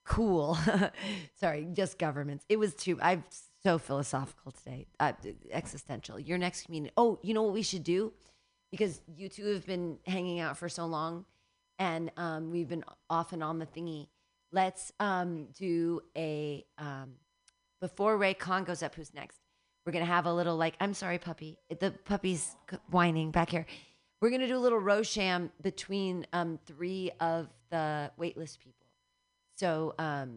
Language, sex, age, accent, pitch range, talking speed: English, female, 40-59, American, 150-195 Hz, 170 wpm